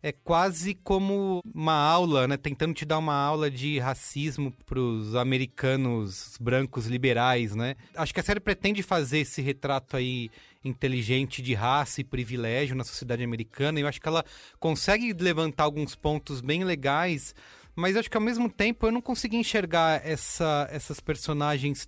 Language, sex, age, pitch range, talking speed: English, male, 30-49, 135-170 Hz, 160 wpm